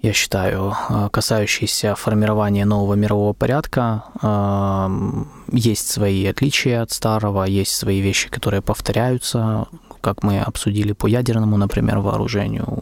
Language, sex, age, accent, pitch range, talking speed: Russian, male, 20-39, native, 100-115 Hz, 110 wpm